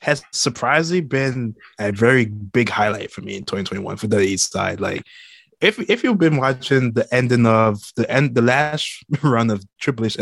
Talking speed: 190 wpm